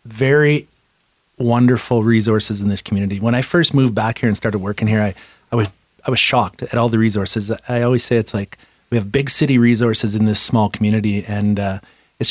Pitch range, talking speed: 105-130 Hz, 210 wpm